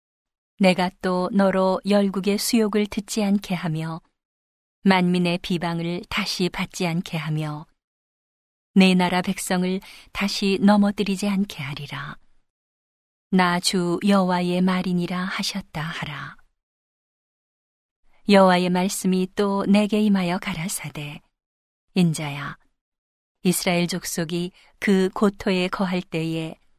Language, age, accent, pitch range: Korean, 40-59, native, 170-200 Hz